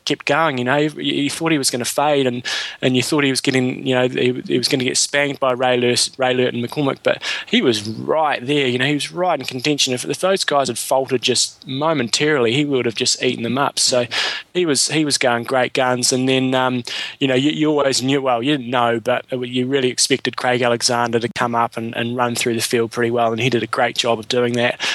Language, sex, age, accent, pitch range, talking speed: English, male, 20-39, Australian, 120-140 Hz, 260 wpm